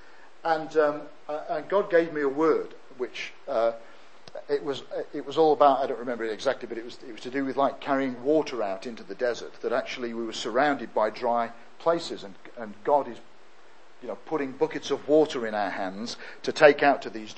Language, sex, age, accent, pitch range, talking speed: English, male, 50-69, British, 130-195 Hz, 220 wpm